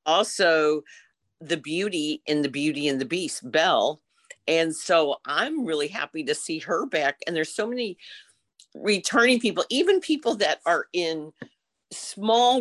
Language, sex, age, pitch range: English, female, 50-69, 150-185 Hz